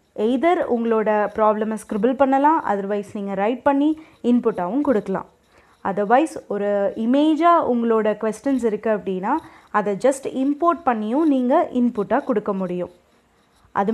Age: 20-39